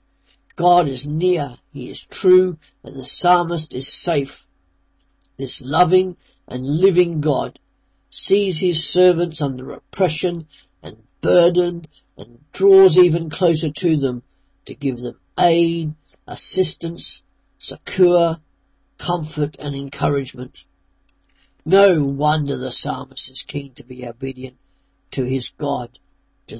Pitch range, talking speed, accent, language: 130-160 Hz, 115 wpm, British, English